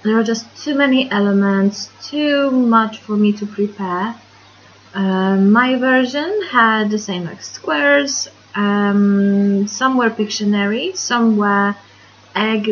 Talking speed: 125 wpm